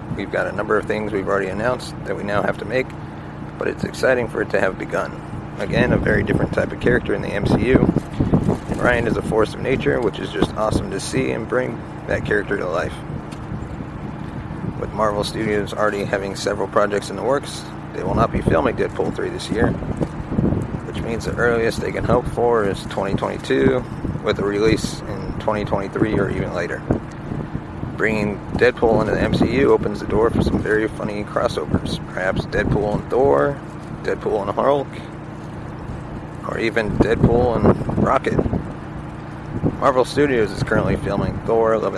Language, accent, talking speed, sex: English, American, 175 wpm, male